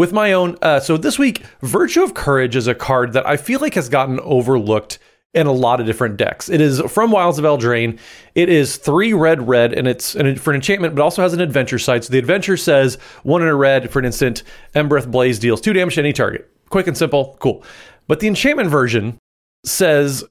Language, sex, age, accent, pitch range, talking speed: English, male, 30-49, American, 125-175 Hz, 230 wpm